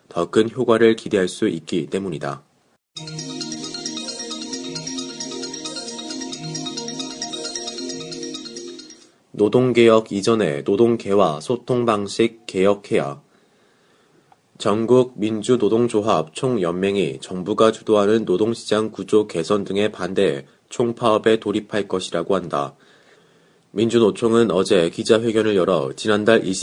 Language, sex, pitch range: Korean, male, 100-115 Hz